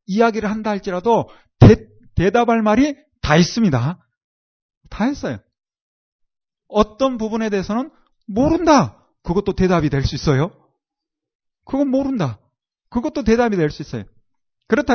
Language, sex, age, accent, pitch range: Korean, male, 40-59, native, 155-240 Hz